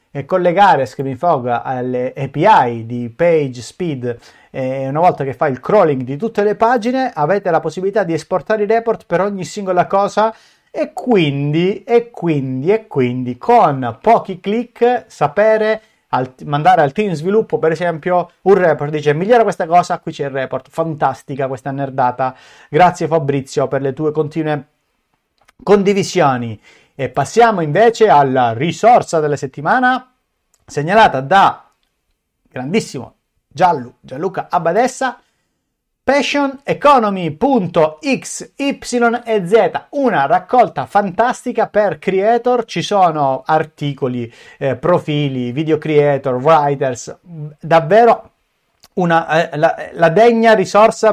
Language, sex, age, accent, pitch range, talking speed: Italian, male, 30-49, native, 140-210 Hz, 120 wpm